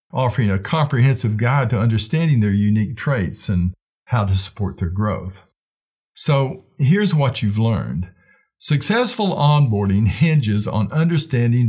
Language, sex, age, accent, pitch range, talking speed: English, male, 50-69, American, 105-145 Hz, 130 wpm